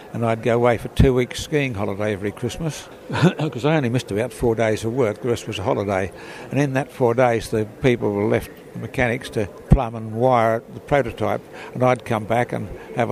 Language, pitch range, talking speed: English, 115-135 Hz, 220 wpm